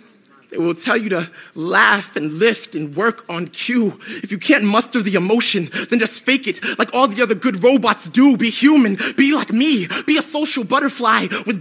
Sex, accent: male, American